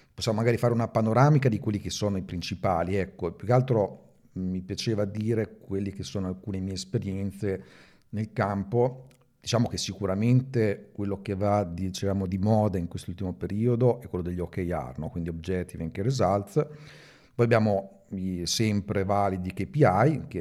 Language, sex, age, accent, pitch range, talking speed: Italian, male, 40-59, native, 95-125 Hz, 160 wpm